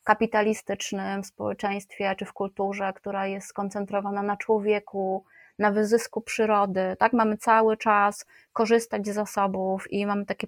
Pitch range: 200-230 Hz